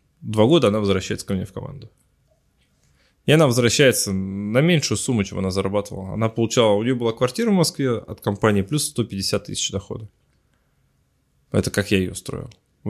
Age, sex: 20-39, male